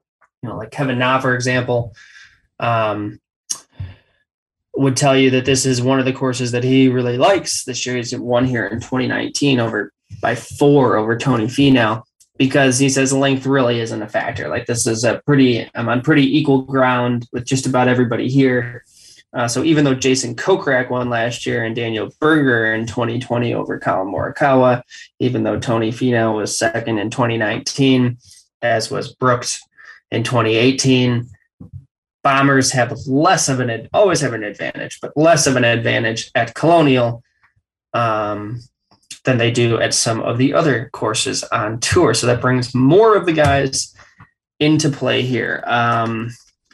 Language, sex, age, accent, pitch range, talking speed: English, male, 20-39, American, 115-135 Hz, 165 wpm